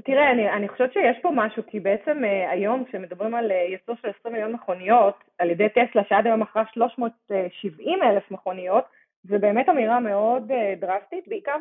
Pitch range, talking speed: 200-250 Hz, 180 wpm